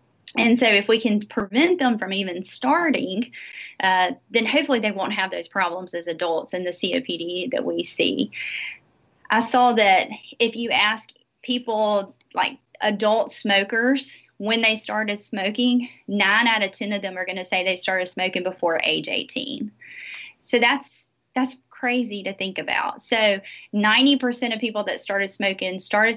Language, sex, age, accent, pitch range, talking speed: English, female, 30-49, American, 185-235 Hz, 165 wpm